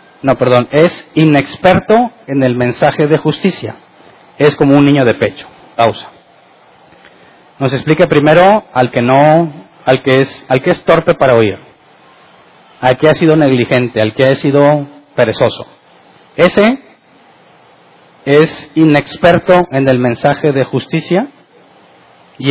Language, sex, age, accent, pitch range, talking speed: Spanish, male, 40-59, Mexican, 140-170 Hz, 135 wpm